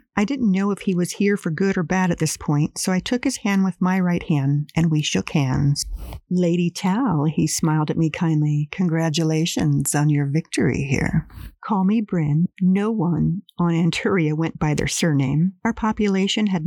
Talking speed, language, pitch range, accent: 190 wpm, English, 155-190 Hz, American